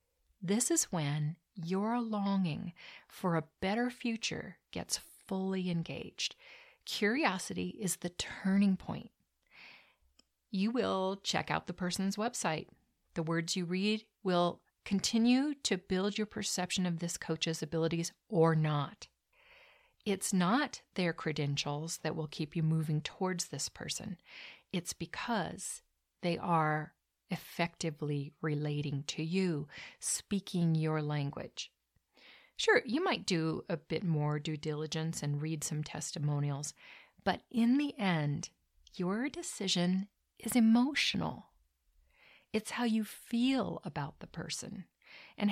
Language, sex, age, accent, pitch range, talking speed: English, female, 40-59, American, 160-210 Hz, 120 wpm